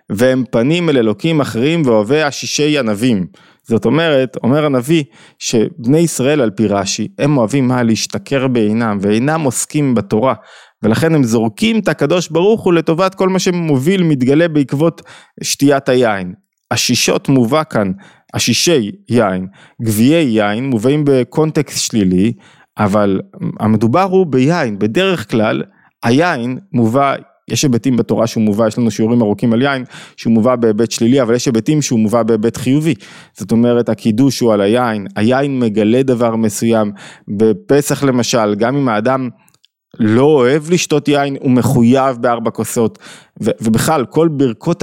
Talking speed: 140 wpm